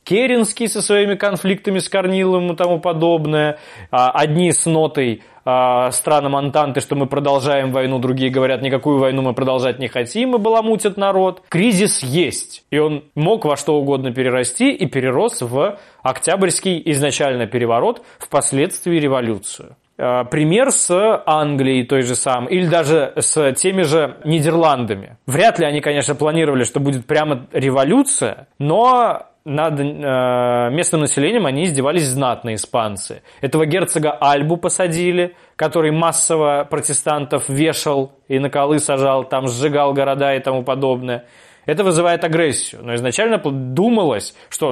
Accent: native